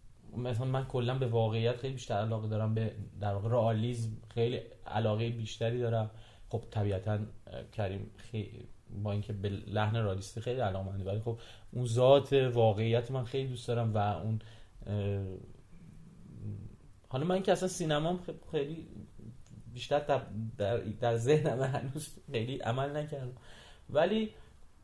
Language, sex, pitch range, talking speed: Persian, male, 110-130 Hz, 130 wpm